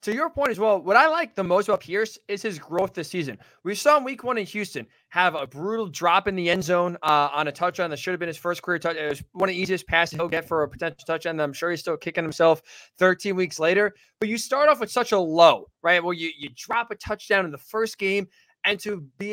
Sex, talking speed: male, 275 wpm